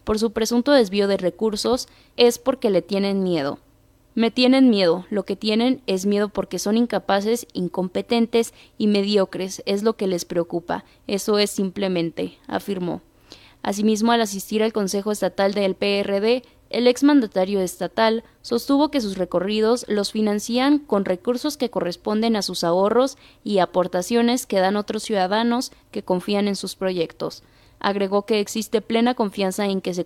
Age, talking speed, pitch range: 20-39, 155 wpm, 195-235 Hz